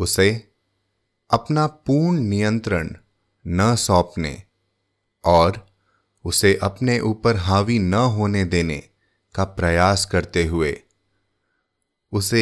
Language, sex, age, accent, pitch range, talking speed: English, male, 30-49, Indian, 90-110 Hz, 90 wpm